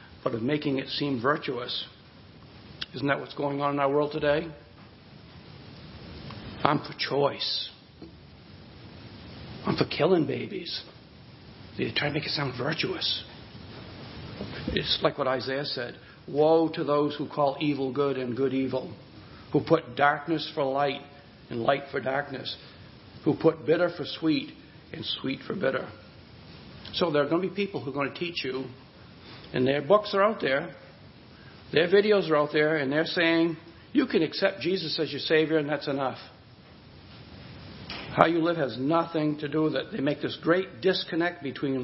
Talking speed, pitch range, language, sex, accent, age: 165 wpm, 140-165 Hz, English, male, American, 60-79